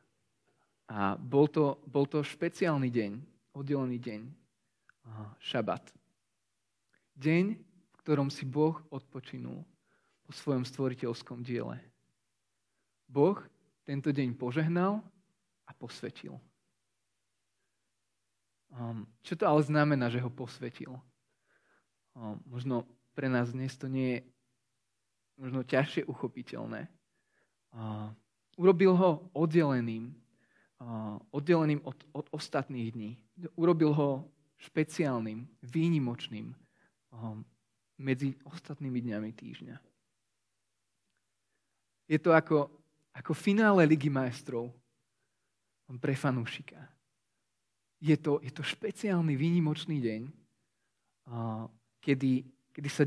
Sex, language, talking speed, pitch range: male, Slovak, 90 wpm, 115-150 Hz